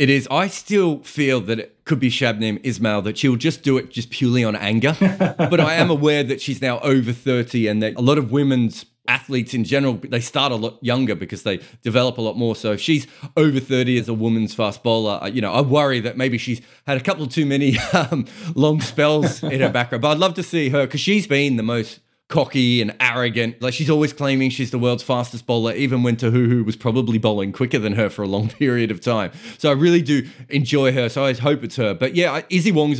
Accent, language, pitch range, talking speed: Australian, English, 115-145 Hz, 240 wpm